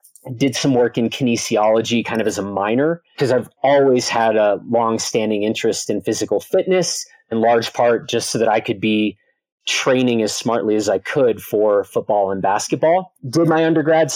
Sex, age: male, 30-49